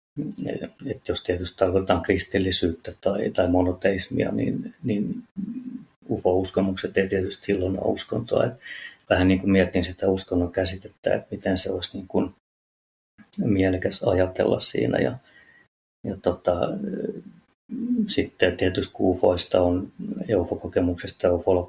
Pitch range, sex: 90-105 Hz, male